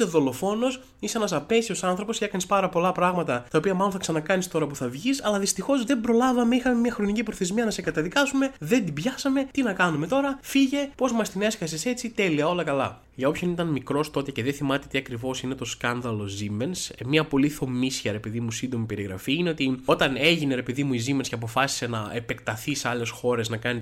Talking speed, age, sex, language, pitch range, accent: 220 wpm, 20-39, male, Greek, 125-190 Hz, native